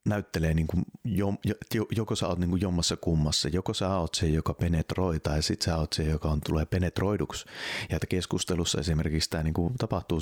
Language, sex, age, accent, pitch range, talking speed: Finnish, male, 30-49, native, 80-95 Hz, 195 wpm